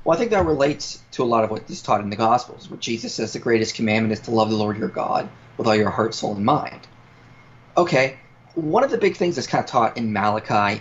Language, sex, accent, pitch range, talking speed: English, male, American, 110-150 Hz, 260 wpm